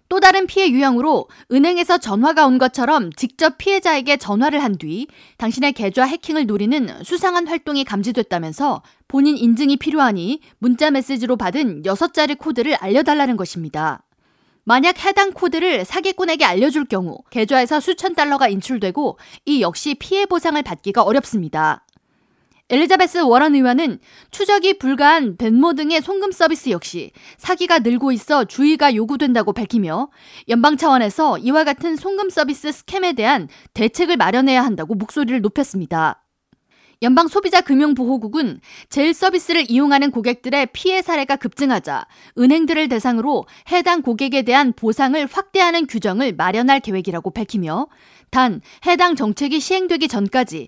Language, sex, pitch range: Korean, female, 240-320 Hz